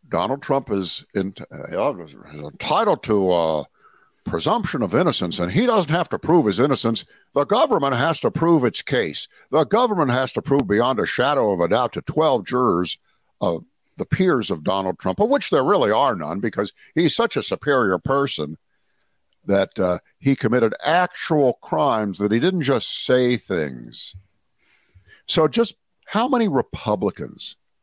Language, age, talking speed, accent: English, 60-79, 160 wpm, American